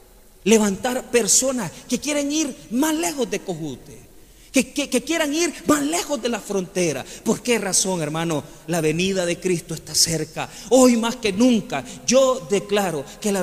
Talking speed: 165 wpm